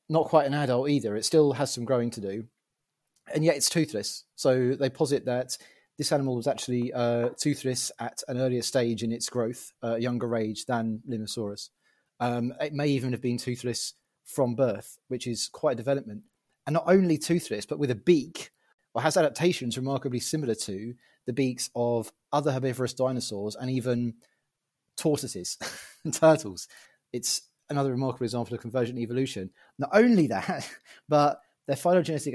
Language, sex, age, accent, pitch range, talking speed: English, male, 30-49, British, 115-140 Hz, 170 wpm